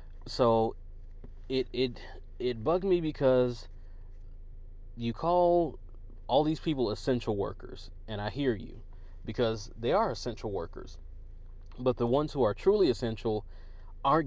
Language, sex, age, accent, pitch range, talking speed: English, male, 30-49, American, 90-130 Hz, 130 wpm